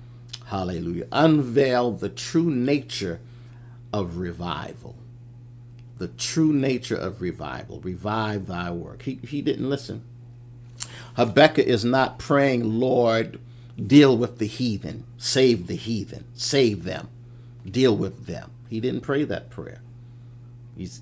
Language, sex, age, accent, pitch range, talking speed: English, male, 50-69, American, 110-125 Hz, 120 wpm